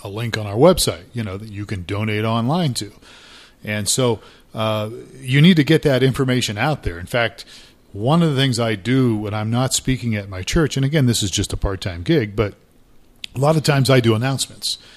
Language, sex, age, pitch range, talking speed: English, male, 40-59, 105-135 Hz, 220 wpm